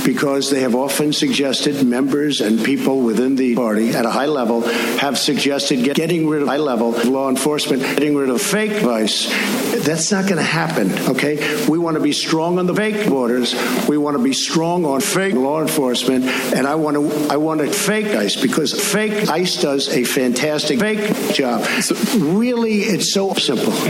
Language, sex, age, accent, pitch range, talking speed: English, male, 60-79, American, 130-185 Hz, 190 wpm